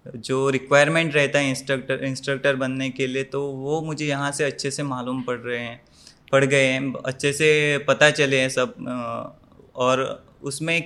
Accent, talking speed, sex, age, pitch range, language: Indian, 170 wpm, male, 20-39, 130-155 Hz, English